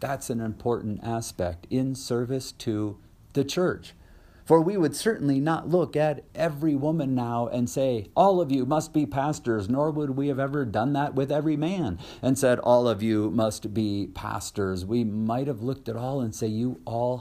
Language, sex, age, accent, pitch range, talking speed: English, male, 40-59, American, 95-125 Hz, 190 wpm